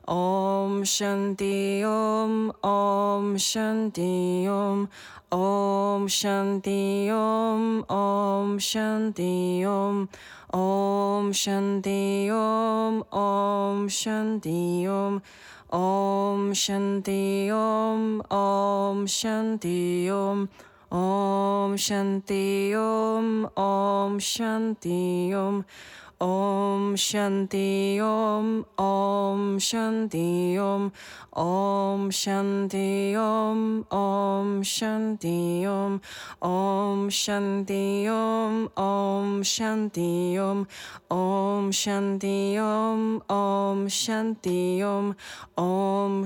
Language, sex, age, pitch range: Czech, female, 20-39, 195-210 Hz